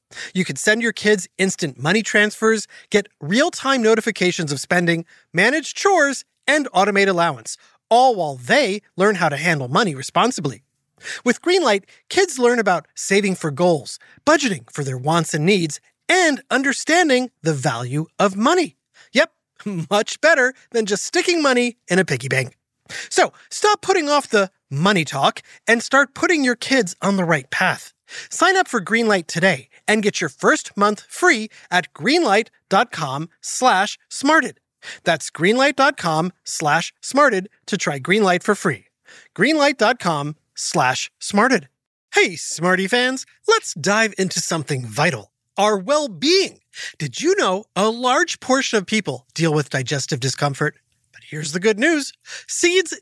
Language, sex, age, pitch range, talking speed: English, male, 30-49, 170-265 Hz, 145 wpm